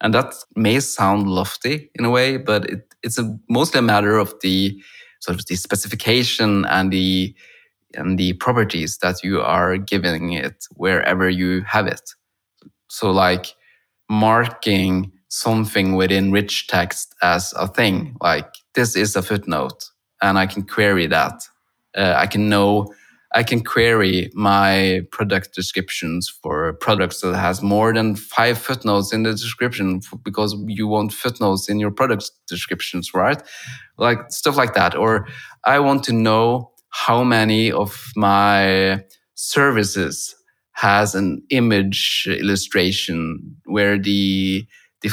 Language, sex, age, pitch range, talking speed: English, male, 20-39, 95-110 Hz, 140 wpm